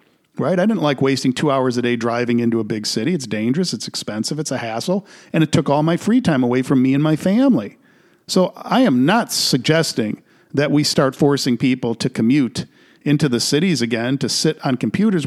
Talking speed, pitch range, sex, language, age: 210 wpm, 130-170 Hz, male, English, 50-69